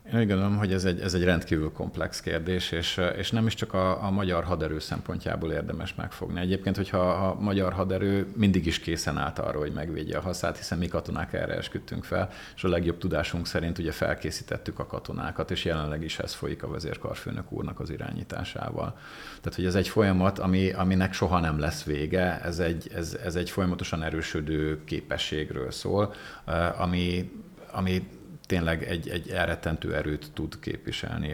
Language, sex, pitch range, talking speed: Hungarian, male, 85-95 Hz, 165 wpm